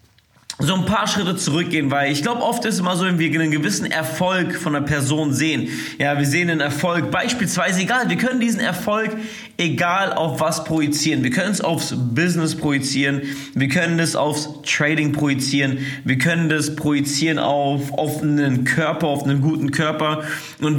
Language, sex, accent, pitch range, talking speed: German, male, German, 140-160 Hz, 180 wpm